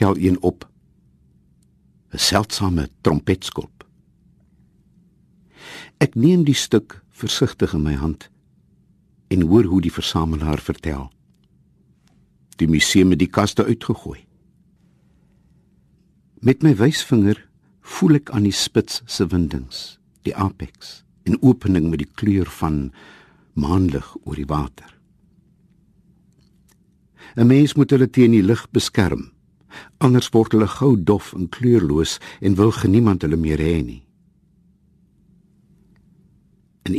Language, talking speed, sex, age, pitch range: Dutch, 110 wpm, male, 60-79, 80-115 Hz